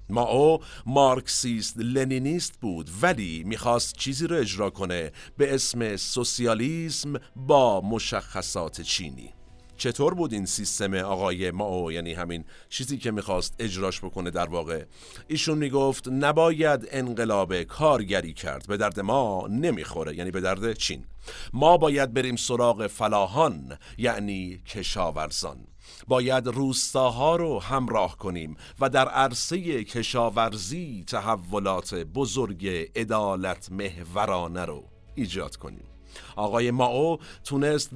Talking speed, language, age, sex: 115 wpm, Persian, 50-69, male